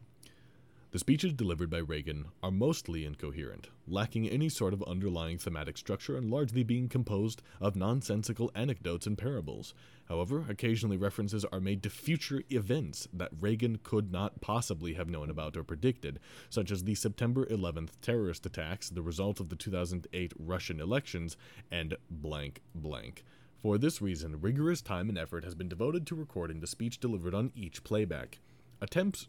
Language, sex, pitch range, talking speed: English, male, 85-115 Hz, 160 wpm